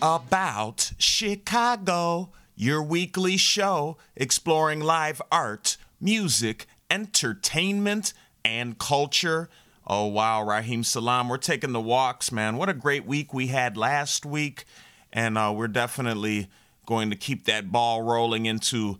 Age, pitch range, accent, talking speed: 30-49, 115-160 Hz, American, 125 wpm